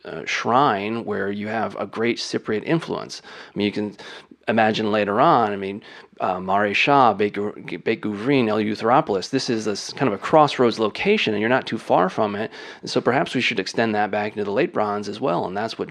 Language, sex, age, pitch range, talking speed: English, male, 30-49, 105-125 Hz, 210 wpm